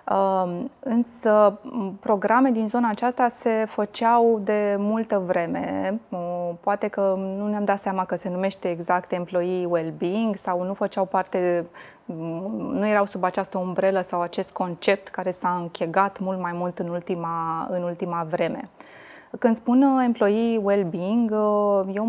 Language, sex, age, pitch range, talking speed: Romanian, female, 20-39, 185-215 Hz, 135 wpm